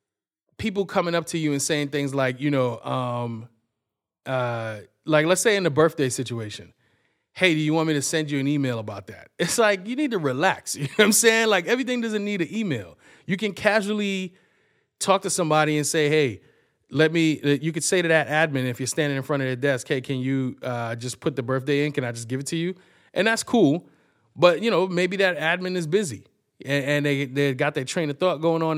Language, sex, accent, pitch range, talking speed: English, male, American, 130-165 Hz, 230 wpm